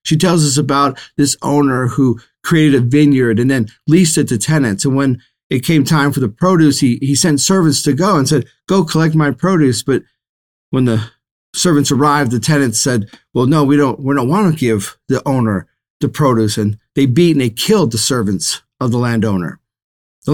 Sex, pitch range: male, 125-160 Hz